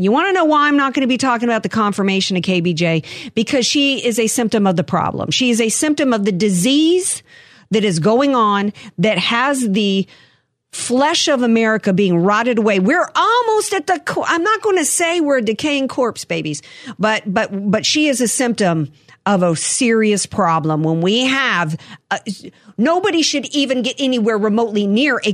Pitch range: 175-250 Hz